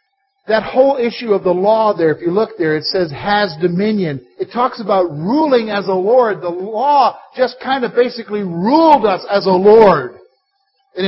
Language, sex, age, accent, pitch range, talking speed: English, male, 50-69, American, 190-265 Hz, 185 wpm